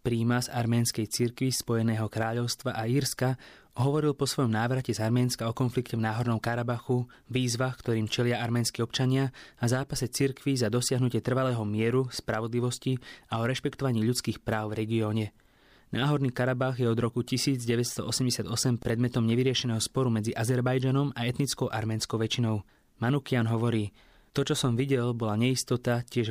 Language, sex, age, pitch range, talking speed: English, male, 20-39, 115-130 Hz, 145 wpm